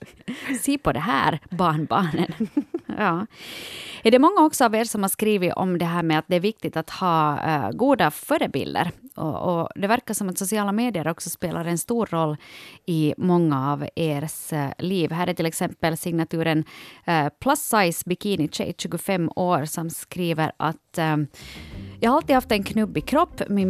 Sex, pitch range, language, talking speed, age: female, 155-210 Hz, Swedish, 180 wpm, 30-49